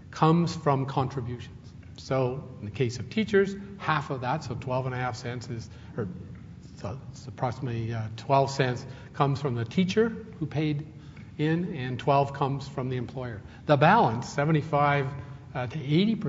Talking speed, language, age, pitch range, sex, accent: 145 wpm, English, 50-69, 120-150 Hz, male, American